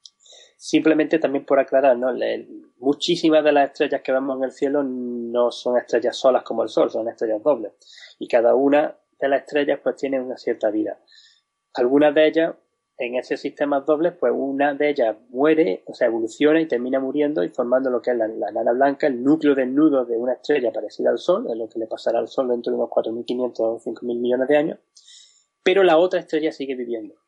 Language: Spanish